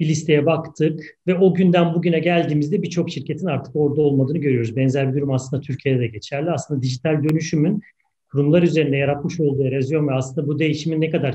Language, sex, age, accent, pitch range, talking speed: Turkish, male, 40-59, native, 155-185 Hz, 185 wpm